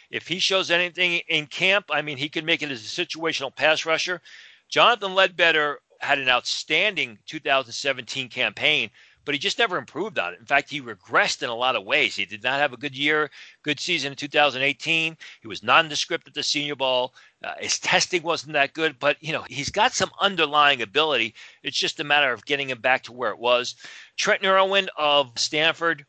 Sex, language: male, English